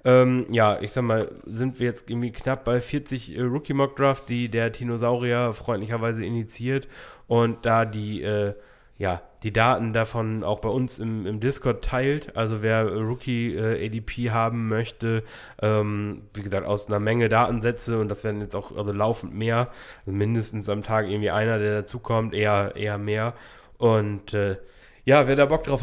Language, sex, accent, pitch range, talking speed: German, male, German, 105-125 Hz, 170 wpm